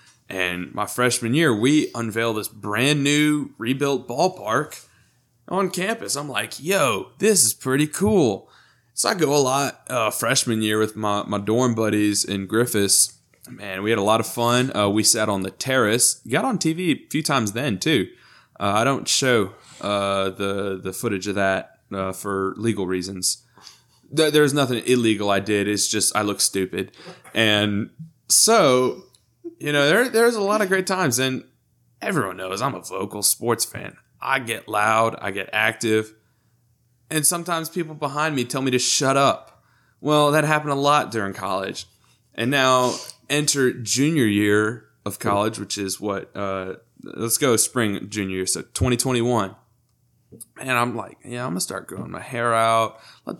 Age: 20-39